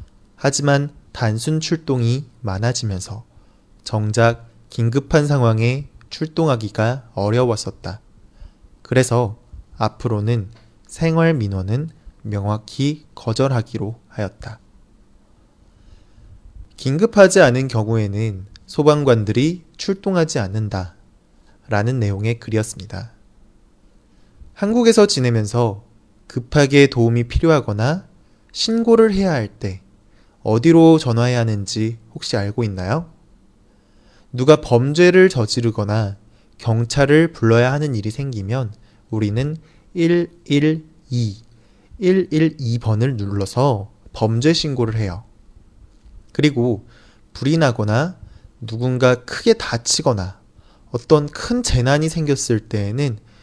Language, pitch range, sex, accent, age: Chinese, 105-145 Hz, male, Korean, 20-39